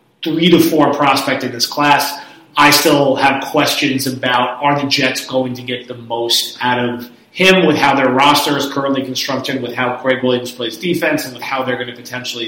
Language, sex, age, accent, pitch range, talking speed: English, male, 30-49, American, 125-150 Hz, 205 wpm